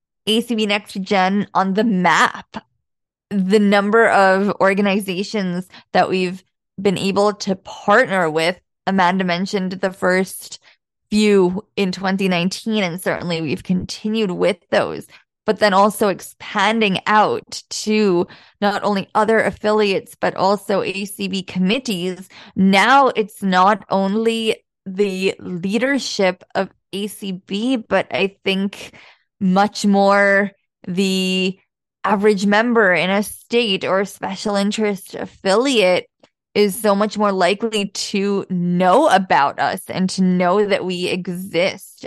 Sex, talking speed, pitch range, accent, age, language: female, 120 wpm, 185-210 Hz, American, 20-39, English